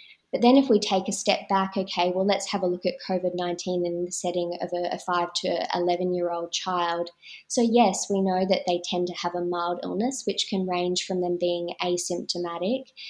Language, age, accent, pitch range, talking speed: English, 20-39, Australian, 175-195 Hz, 205 wpm